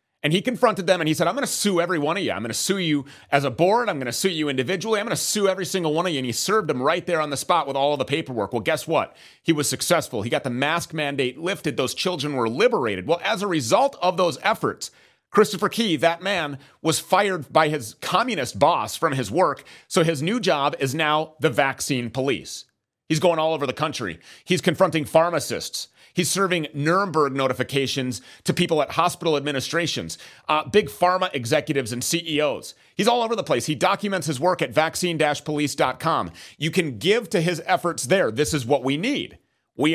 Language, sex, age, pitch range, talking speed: English, male, 30-49, 145-185 Hz, 220 wpm